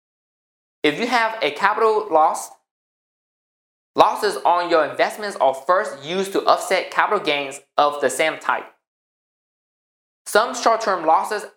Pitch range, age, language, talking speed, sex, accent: 140-180 Hz, 20-39, English, 125 wpm, male, American